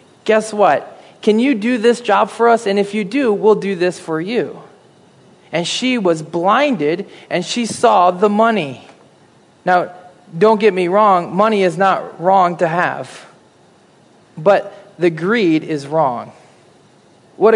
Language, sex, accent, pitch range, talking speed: English, male, American, 180-235 Hz, 150 wpm